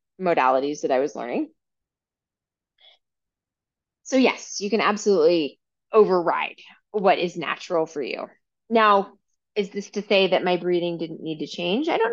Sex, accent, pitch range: female, American, 180-250 Hz